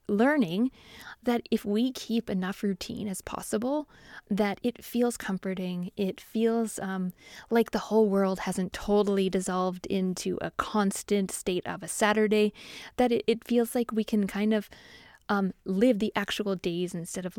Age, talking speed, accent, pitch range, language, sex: 20-39, 160 wpm, American, 190-230 Hz, English, female